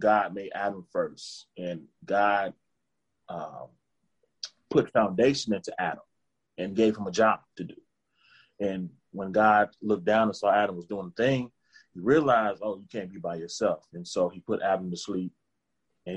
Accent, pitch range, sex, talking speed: American, 90-105 Hz, male, 170 wpm